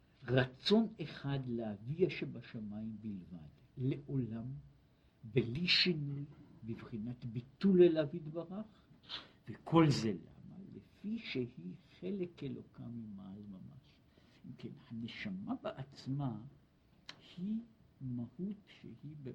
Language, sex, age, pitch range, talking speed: Hebrew, male, 60-79, 120-180 Hz, 85 wpm